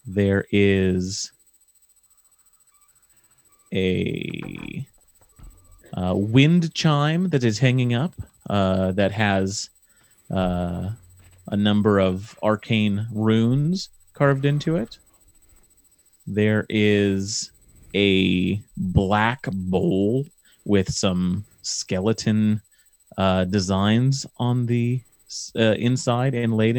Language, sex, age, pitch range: English, male, 30-49, 95-125 Hz